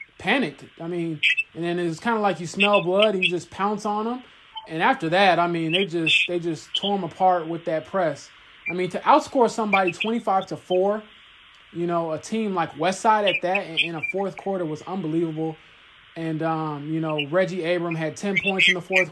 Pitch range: 165-195 Hz